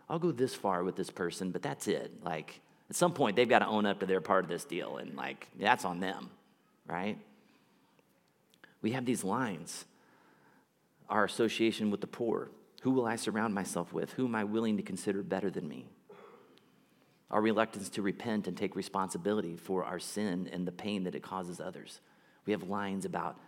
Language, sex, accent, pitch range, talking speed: English, male, American, 90-110 Hz, 195 wpm